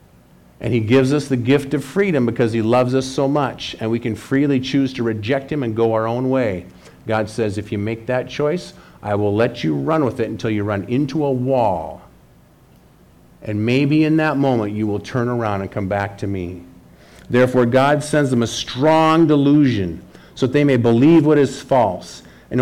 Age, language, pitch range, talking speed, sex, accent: 50-69, English, 105-135 Hz, 205 wpm, male, American